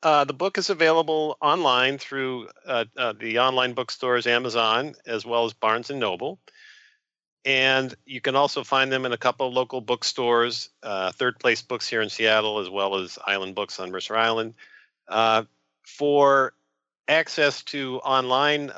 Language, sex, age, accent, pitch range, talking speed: English, male, 50-69, American, 110-135 Hz, 165 wpm